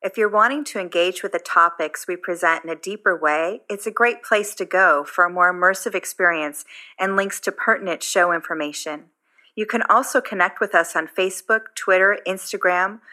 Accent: American